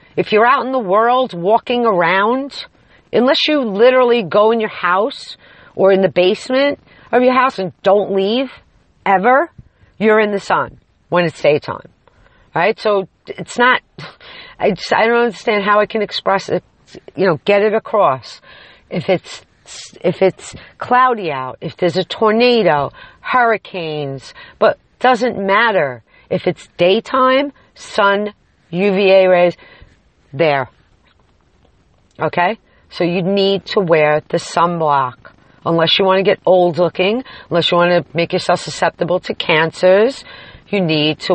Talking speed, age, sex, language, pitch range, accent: 150 wpm, 50-69, female, English, 175-230 Hz, American